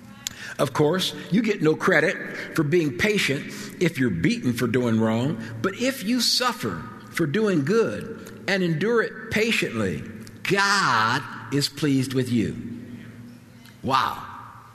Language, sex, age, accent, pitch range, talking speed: English, male, 50-69, American, 120-160 Hz, 130 wpm